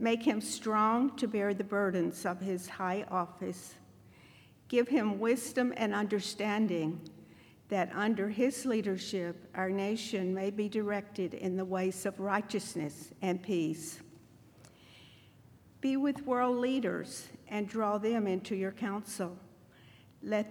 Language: English